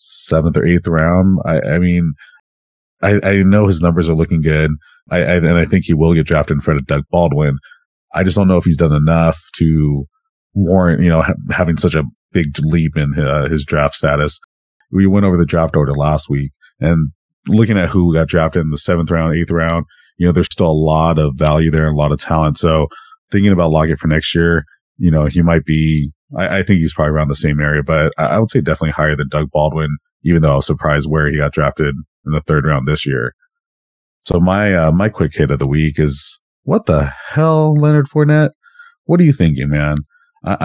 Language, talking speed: English, 225 wpm